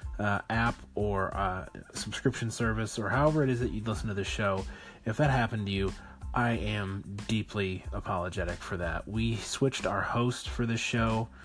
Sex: male